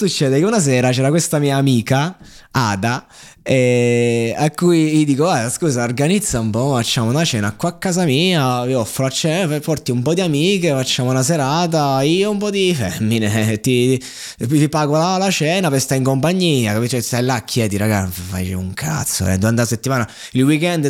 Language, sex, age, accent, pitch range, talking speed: Italian, male, 20-39, native, 105-150 Hz, 195 wpm